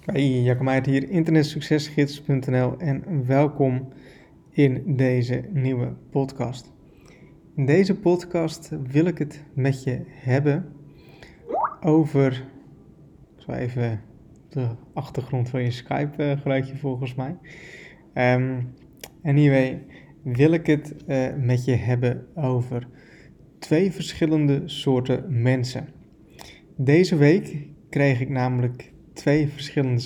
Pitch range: 130-150 Hz